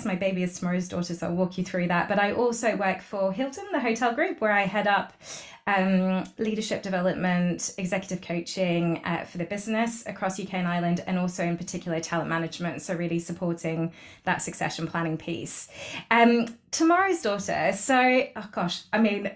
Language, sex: English, female